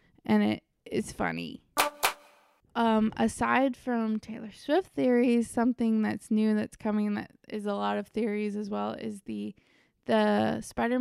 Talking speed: 145 wpm